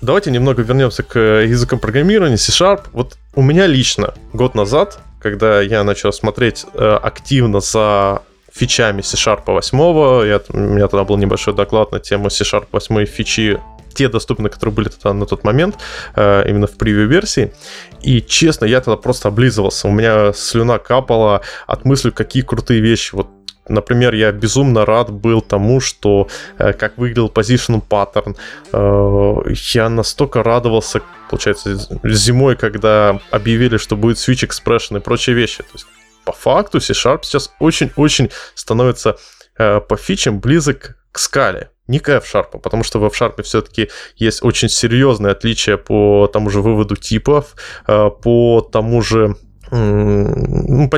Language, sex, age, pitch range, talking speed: Russian, male, 20-39, 105-130 Hz, 145 wpm